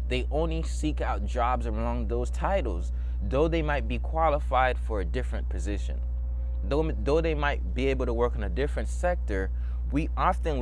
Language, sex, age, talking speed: English, male, 20-39, 175 wpm